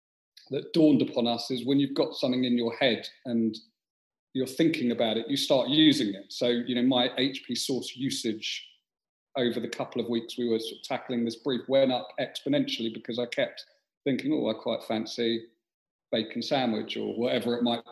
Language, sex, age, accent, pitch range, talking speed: English, male, 40-59, British, 120-140 Hz, 185 wpm